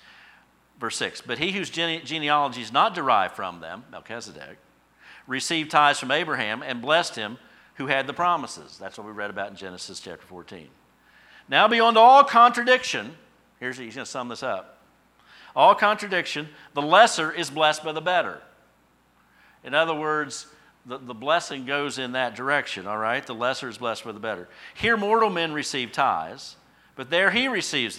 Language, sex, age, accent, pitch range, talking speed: English, male, 50-69, American, 125-165 Hz, 170 wpm